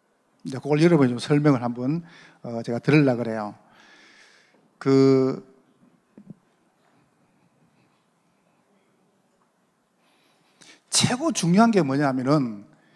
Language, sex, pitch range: Korean, male, 130-190 Hz